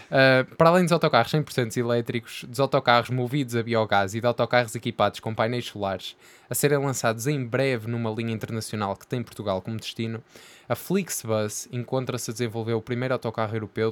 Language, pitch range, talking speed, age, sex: Portuguese, 110-130 Hz, 175 wpm, 10-29, male